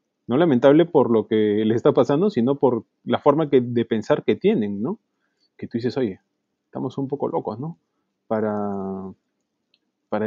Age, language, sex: 20-39, Spanish, male